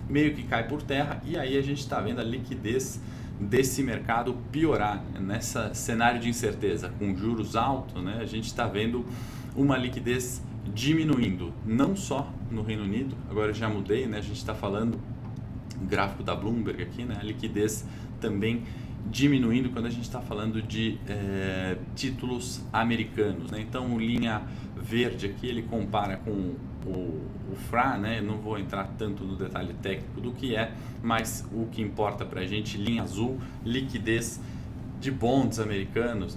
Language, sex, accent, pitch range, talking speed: Portuguese, male, Brazilian, 100-120 Hz, 160 wpm